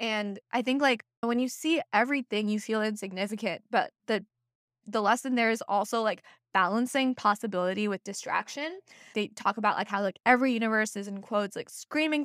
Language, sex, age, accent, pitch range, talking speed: English, female, 20-39, American, 190-235 Hz, 175 wpm